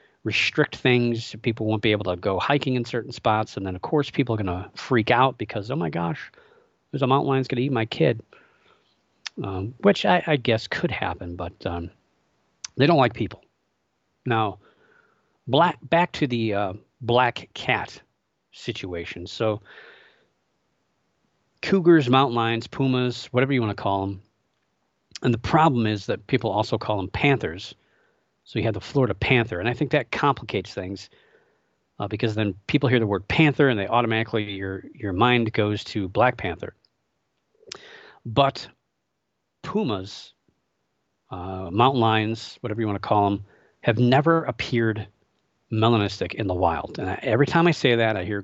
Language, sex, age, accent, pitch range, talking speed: English, male, 40-59, American, 105-130 Hz, 165 wpm